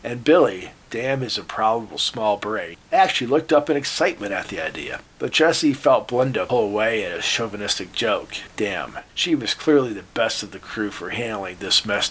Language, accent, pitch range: English, American, 110-145 Hz